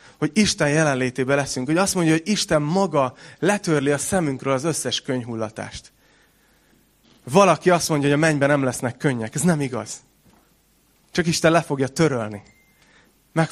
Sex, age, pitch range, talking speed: male, 30-49, 125-160 Hz, 150 wpm